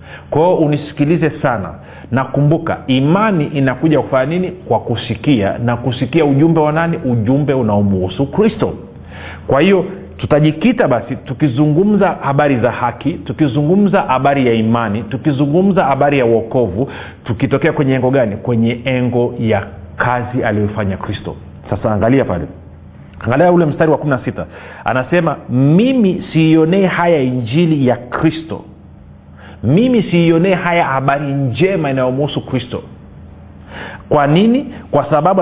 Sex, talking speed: male, 120 wpm